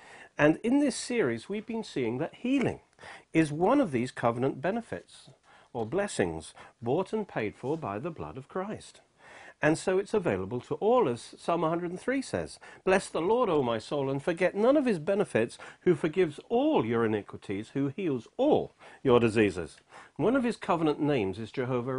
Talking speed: 175 wpm